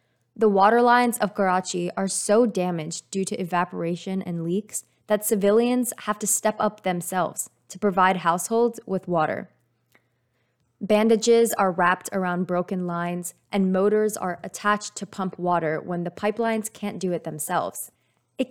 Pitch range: 180-220 Hz